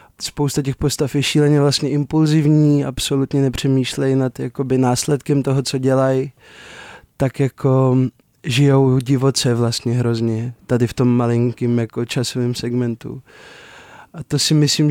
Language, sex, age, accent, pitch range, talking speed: Czech, male, 20-39, native, 130-150 Hz, 130 wpm